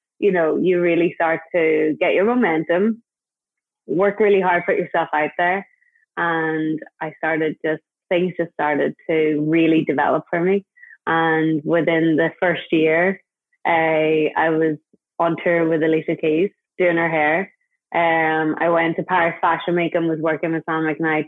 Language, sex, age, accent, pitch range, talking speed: English, female, 20-39, Irish, 160-185 Hz, 160 wpm